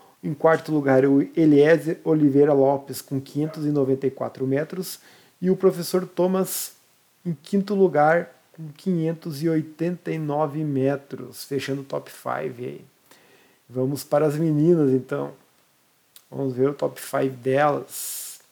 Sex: male